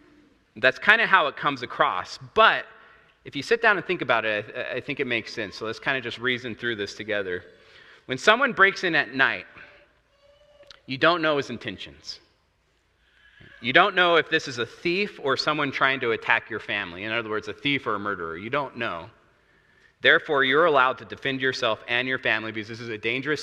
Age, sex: 30-49, male